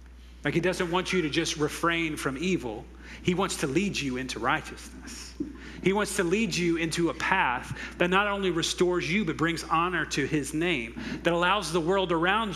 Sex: male